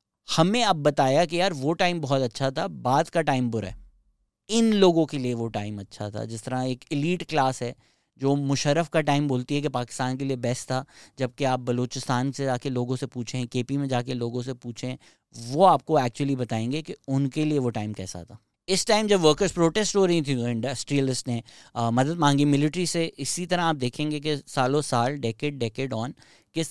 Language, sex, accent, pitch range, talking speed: English, male, Indian, 120-155 Hz, 130 wpm